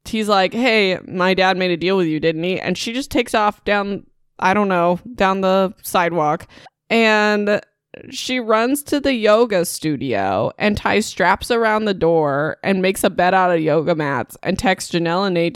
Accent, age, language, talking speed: American, 20-39, English, 195 wpm